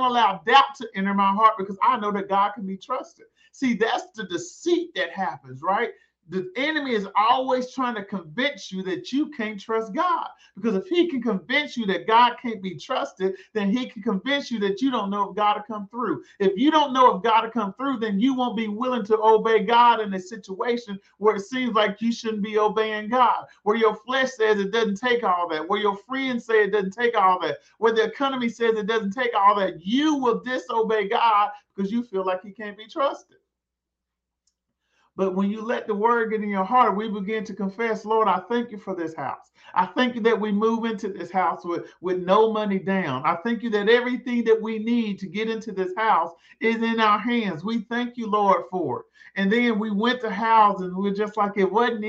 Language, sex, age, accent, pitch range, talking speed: English, male, 40-59, American, 200-245 Hz, 225 wpm